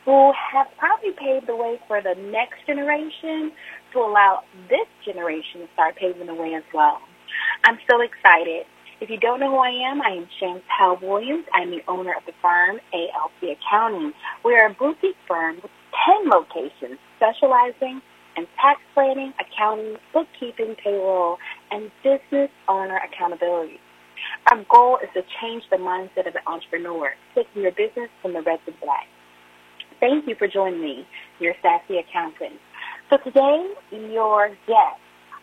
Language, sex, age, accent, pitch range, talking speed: English, female, 30-49, American, 165-275 Hz, 160 wpm